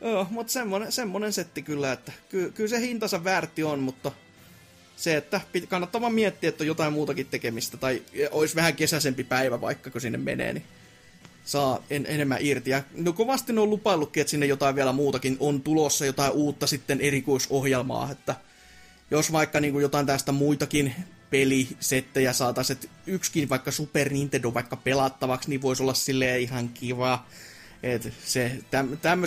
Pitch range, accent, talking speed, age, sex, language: 130-155 Hz, native, 160 wpm, 20-39, male, Finnish